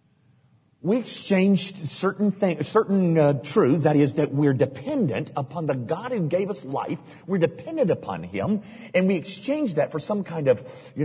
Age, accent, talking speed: 50-69, American, 175 wpm